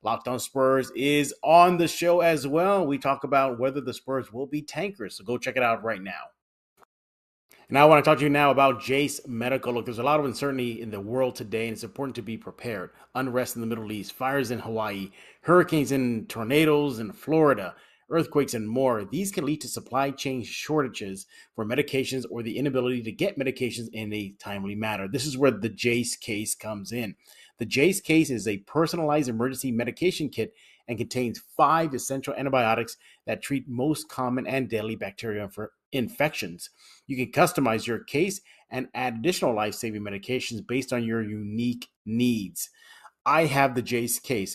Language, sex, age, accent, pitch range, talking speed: English, male, 30-49, American, 115-140 Hz, 185 wpm